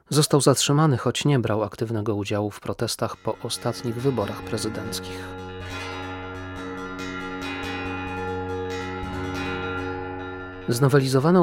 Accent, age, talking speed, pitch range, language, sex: native, 30-49, 75 wpm, 110-130 Hz, Polish, male